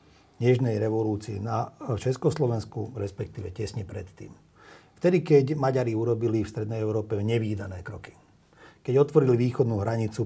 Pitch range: 105-135 Hz